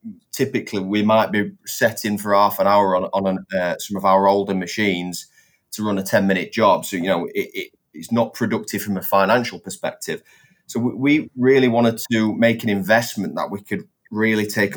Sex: male